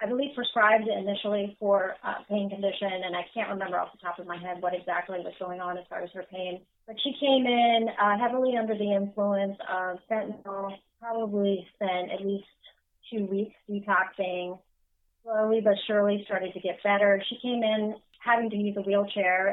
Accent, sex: American, female